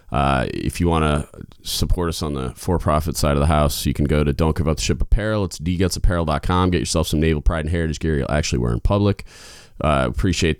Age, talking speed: 30-49, 230 wpm